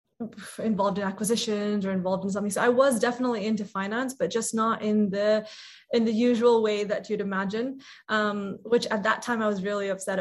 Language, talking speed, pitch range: English, 200 wpm, 195-220 Hz